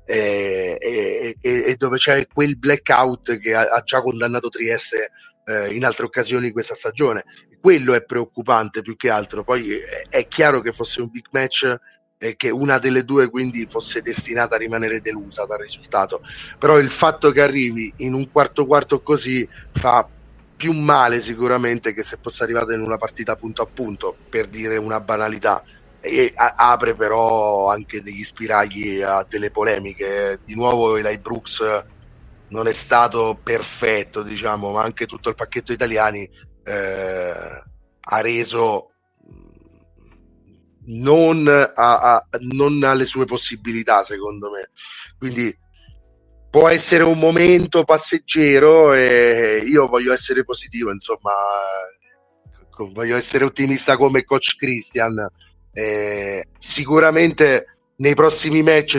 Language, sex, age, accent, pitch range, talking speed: Italian, male, 30-49, native, 110-140 Hz, 130 wpm